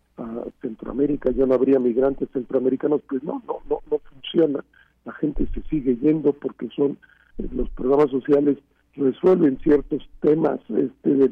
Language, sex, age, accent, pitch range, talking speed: Spanish, male, 50-69, Mexican, 125-145 Hz, 150 wpm